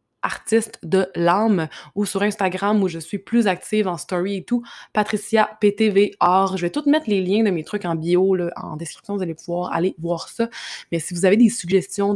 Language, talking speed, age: French, 210 wpm, 20-39